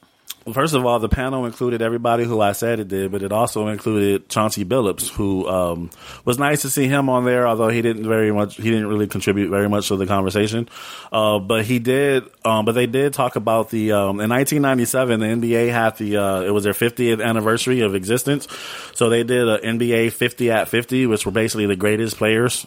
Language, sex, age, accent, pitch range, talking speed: English, male, 30-49, American, 100-120 Hz, 215 wpm